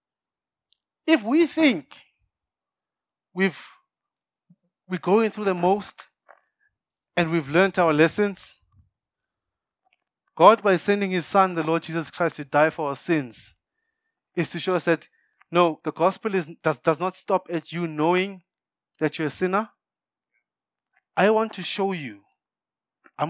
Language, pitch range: English, 145-190 Hz